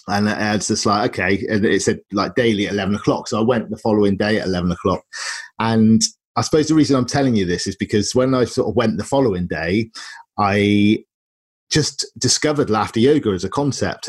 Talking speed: 210 wpm